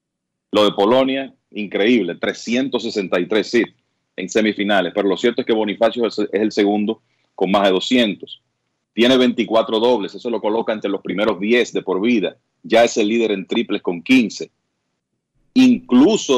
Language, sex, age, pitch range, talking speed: Spanish, male, 40-59, 95-120 Hz, 160 wpm